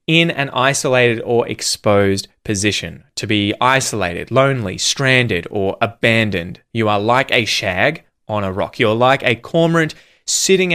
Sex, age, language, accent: male, 20-39, English, Australian